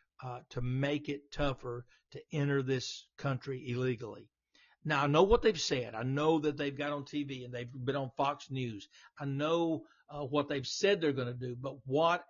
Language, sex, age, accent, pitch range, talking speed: English, male, 60-79, American, 130-150 Hz, 200 wpm